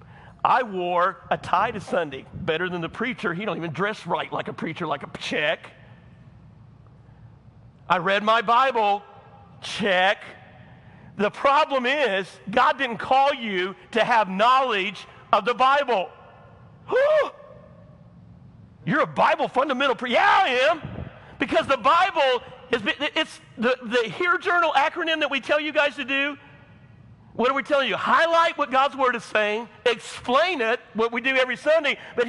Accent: American